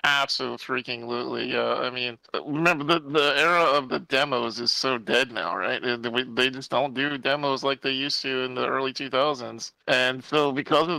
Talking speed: 200 wpm